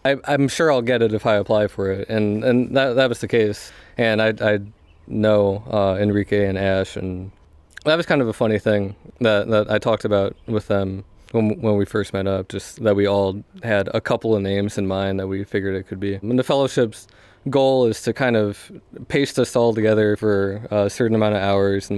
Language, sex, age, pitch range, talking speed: English, male, 20-39, 95-110 Hz, 225 wpm